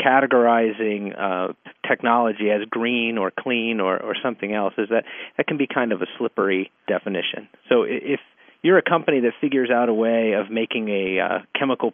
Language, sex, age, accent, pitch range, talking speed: English, male, 40-59, American, 110-135 Hz, 180 wpm